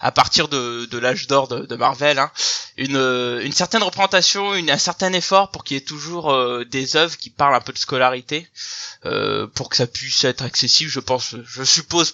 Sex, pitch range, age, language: male, 130-175 Hz, 20-39, French